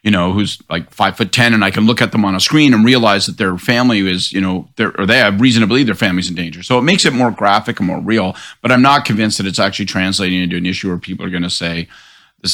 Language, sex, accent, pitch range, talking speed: English, male, American, 100-155 Hz, 285 wpm